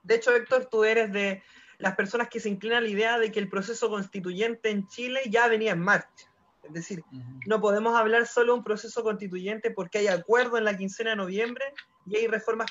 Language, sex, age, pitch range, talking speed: Spanish, male, 20-39, 195-245 Hz, 210 wpm